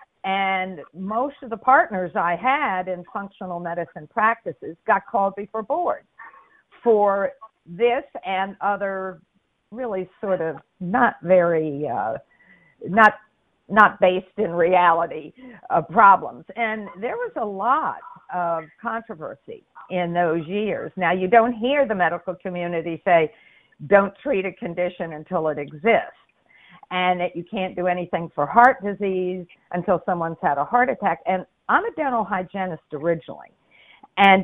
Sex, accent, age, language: female, American, 50-69, English